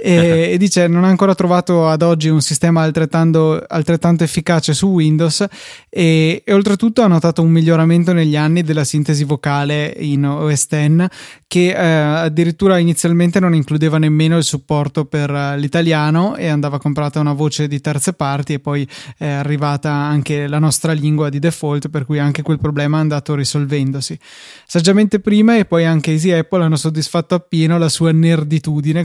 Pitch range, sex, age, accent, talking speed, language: 150-170 Hz, male, 20-39, native, 170 wpm, Italian